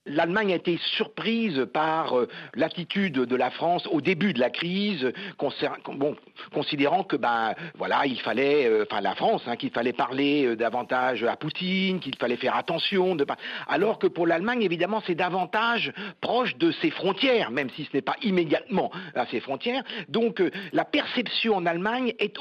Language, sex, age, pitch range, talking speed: French, male, 50-69, 150-220 Hz, 175 wpm